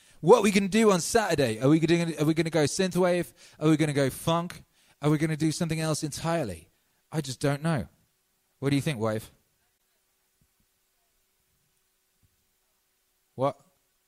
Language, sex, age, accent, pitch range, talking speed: English, male, 30-49, British, 105-165 Hz, 160 wpm